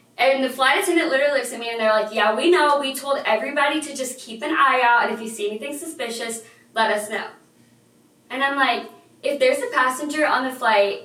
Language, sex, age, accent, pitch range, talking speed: English, female, 20-39, American, 220-275 Hz, 230 wpm